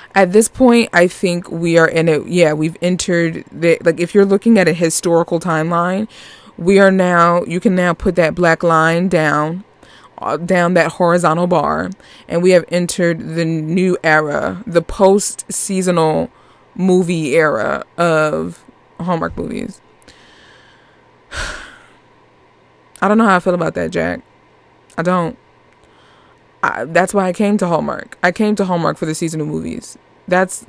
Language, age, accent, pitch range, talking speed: English, 20-39, American, 170-210 Hz, 150 wpm